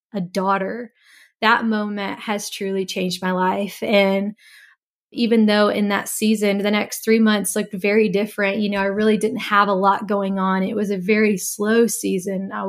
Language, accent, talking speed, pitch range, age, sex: English, American, 185 wpm, 195-225 Hz, 20-39, female